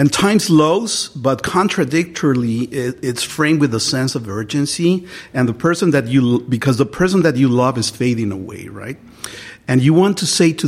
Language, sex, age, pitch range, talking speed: English, male, 50-69, 120-150 Hz, 190 wpm